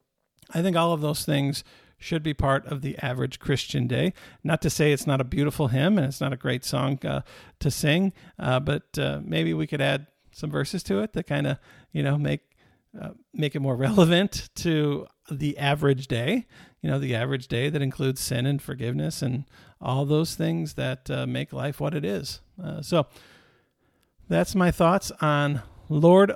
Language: English